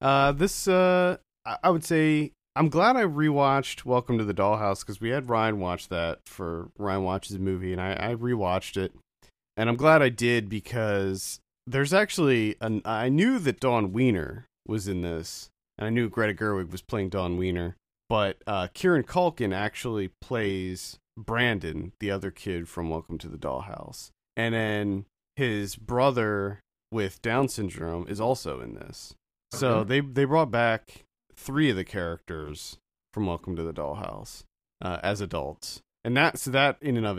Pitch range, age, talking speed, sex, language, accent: 95-140 Hz, 40-59, 170 wpm, male, English, American